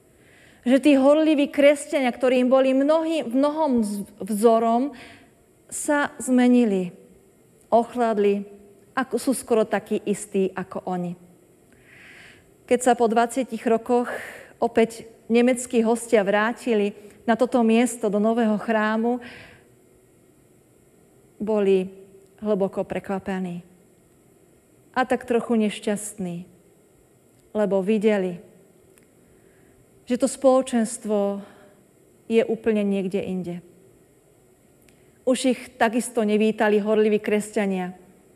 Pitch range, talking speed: 195-240 Hz, 90 wpm